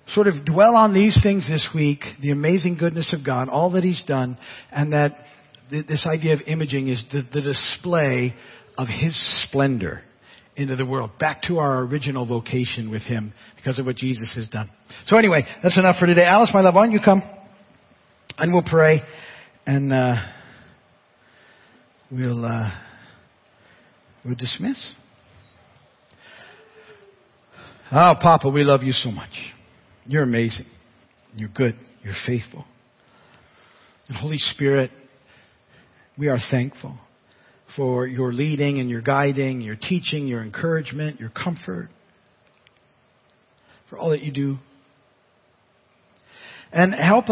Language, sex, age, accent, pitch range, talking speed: English, male, 50-69, American, 125-165 Hz, 135 wpm